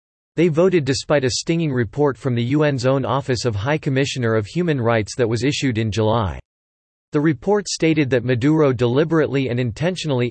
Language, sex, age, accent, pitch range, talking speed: English, male, 40-59, American, 115-150 Hz, 175 wpm